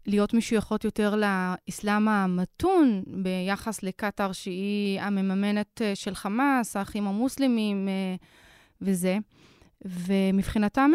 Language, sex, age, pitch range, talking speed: Hebrew, female, 20-39, 200-235 Hz, 80 wpm